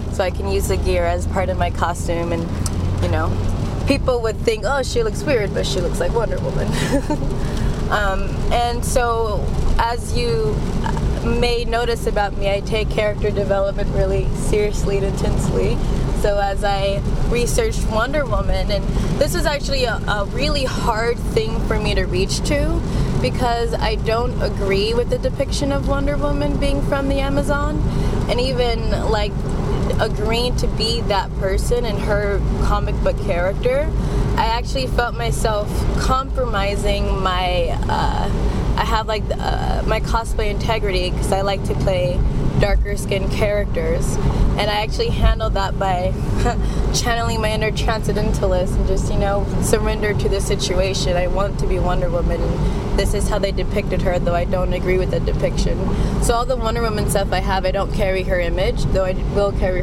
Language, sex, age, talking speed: English, female, 20-39, 165 wpm